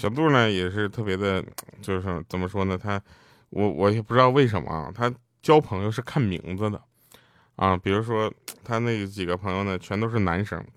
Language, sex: Chinese, male